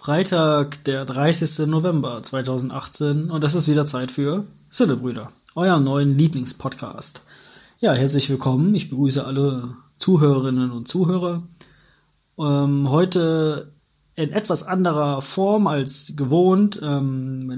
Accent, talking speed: German, 115 wpm